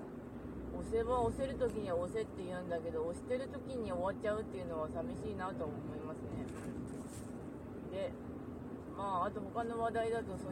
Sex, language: female, Japanese